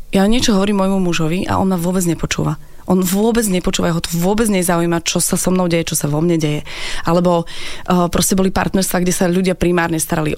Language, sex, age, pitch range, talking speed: Slovak, female, 20-39, 160-185 Hz, 215 wpm